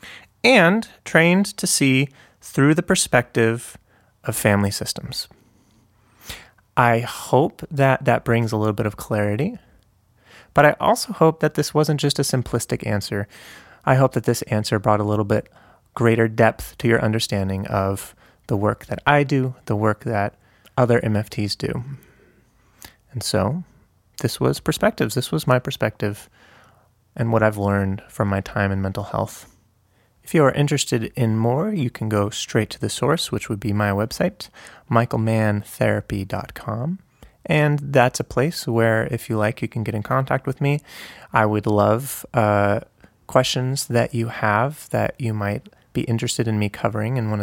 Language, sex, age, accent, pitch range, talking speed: English, male, 30-49, American, 105-135 Hz, 160 wpm